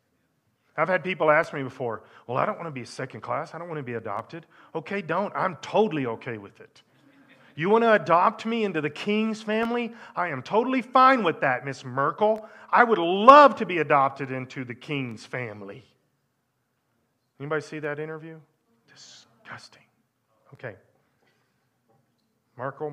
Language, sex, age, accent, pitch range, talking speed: English, male, 40-59, American, 125-170 Hz, 160 wpm